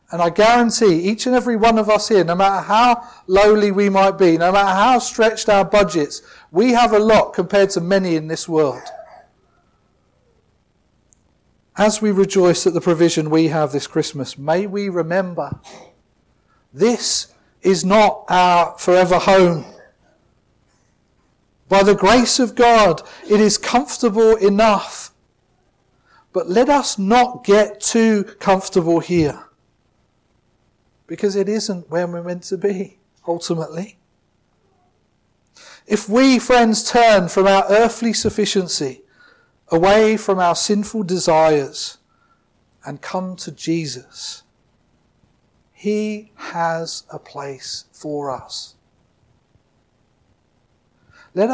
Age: 40-59